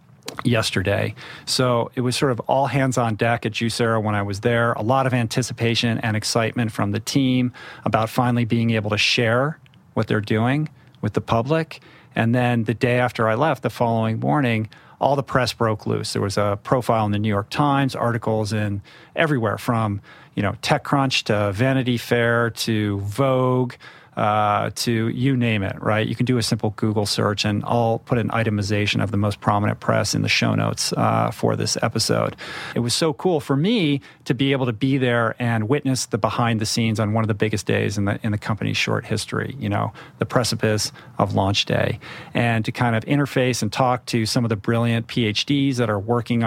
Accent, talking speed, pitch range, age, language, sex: American, 205 wpm, 110-130 Hz, 40-59, English, male